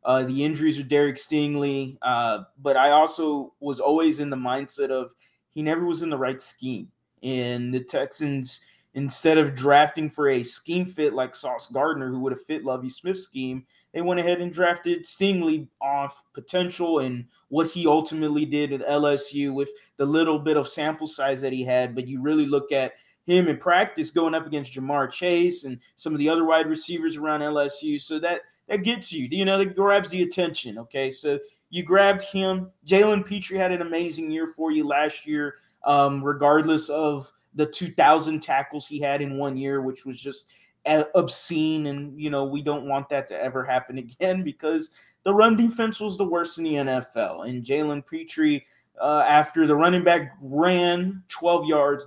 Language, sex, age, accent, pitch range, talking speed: English, male, 20-39, American, 140-170 Hz, 190 wpm